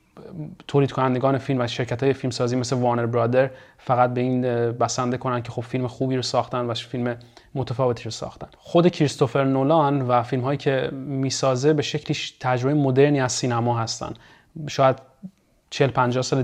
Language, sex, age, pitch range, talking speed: Persian, male, 30-49, 125-135 Hz, 170 wpm